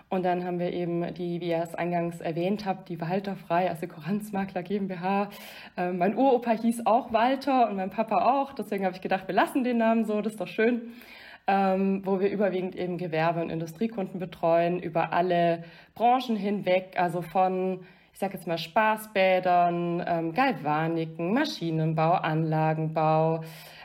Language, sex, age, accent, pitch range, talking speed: English, female, 20-39, German, 170-210 Hz, 155 wpm